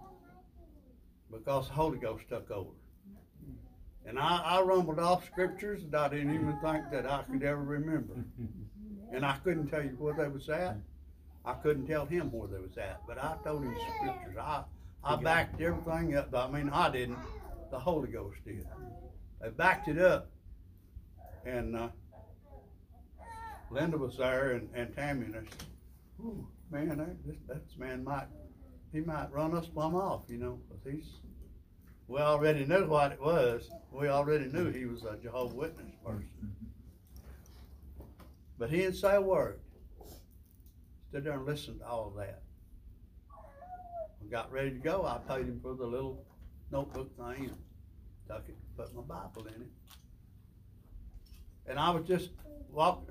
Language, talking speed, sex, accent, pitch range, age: English, 160 wpm, male, American, 90-150 Hz, 60-79